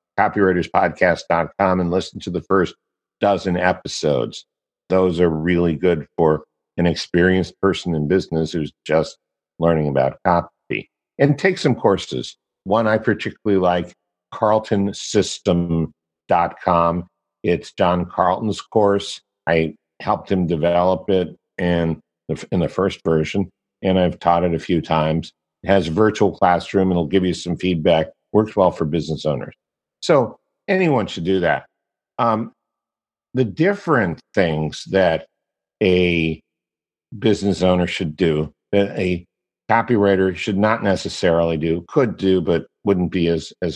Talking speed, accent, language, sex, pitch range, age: 135 wpm, American, English, male, 85-95 Hz, 50-69